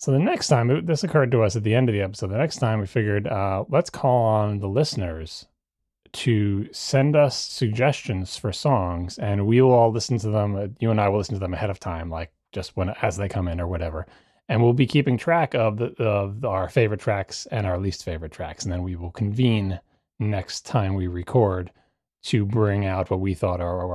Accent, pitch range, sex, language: American, 95-125 Hz, male, English